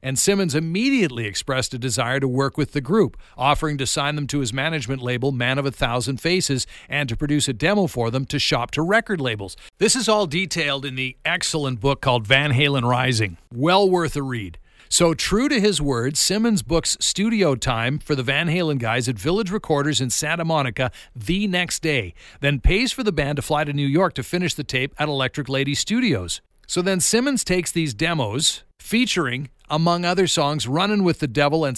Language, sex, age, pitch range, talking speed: English, male, 50-69, 130-180 Hz, 205 wpm